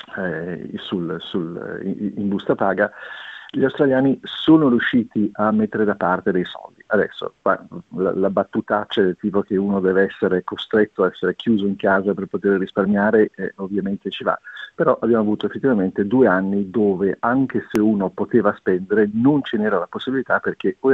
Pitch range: 100-115 Hz